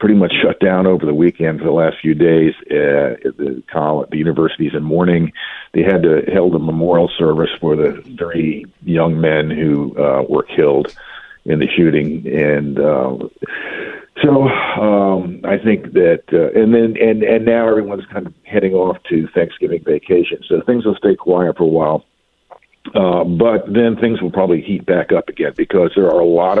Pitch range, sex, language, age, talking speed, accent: 80-135 Hz, male, English, 50-69, 180 wpm, American